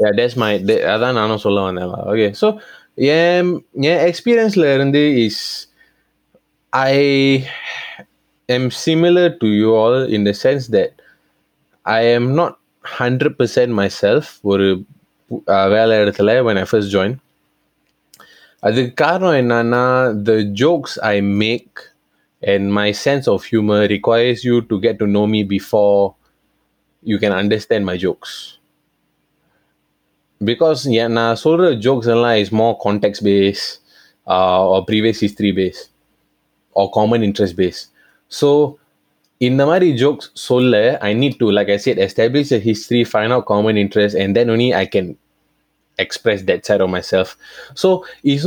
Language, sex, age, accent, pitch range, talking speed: Tamil, male, 20-39, native, 105-135 Hz, 135 wpm